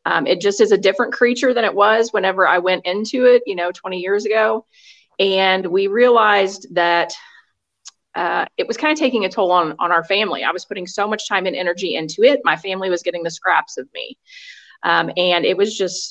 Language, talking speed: English, 220 wpm